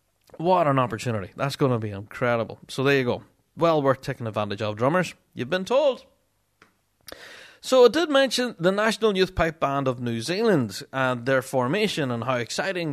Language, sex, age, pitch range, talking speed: English, male, 30-49, 120-175 Hz, 180 wpm